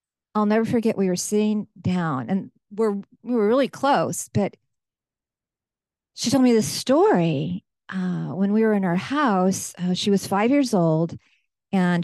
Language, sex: English, female